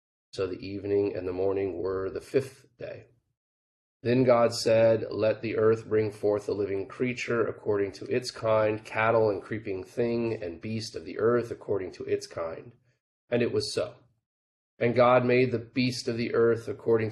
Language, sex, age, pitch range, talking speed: English, male, 30-49, 100-125 Hz, 180 wpm